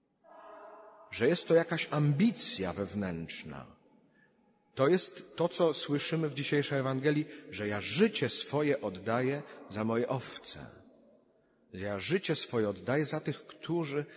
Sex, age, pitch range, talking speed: male, 40-59, 115-150 Hz, 125 wpm